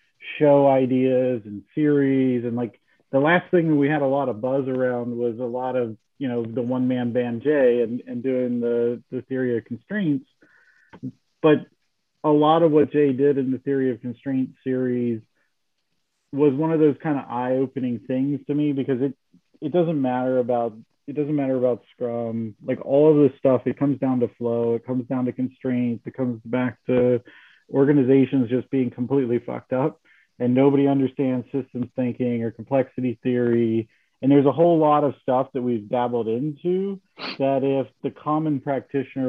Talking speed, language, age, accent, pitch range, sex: 180 wpm, English, 40-59, American, 120-140 Hz, male